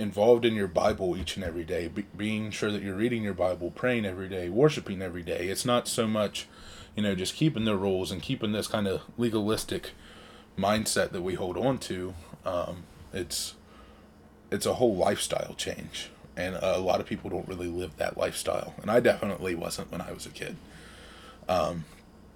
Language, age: English, 20-39